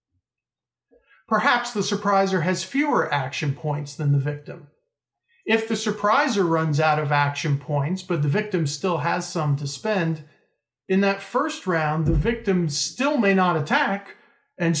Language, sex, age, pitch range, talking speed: English, male, 40-59, 145-205 Hz, 150 wpm